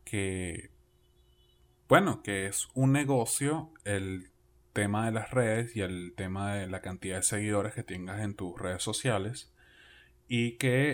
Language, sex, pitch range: Spanish, male, 95-115 Hz